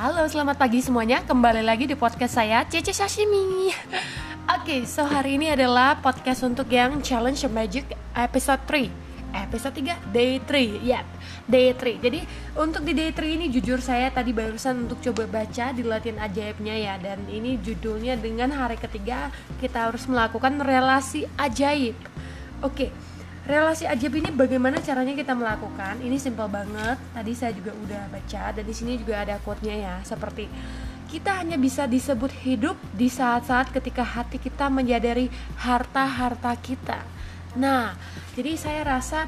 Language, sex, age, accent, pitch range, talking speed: Indonesian, female, 20-39, native, 230-275 Hz, 155 wpm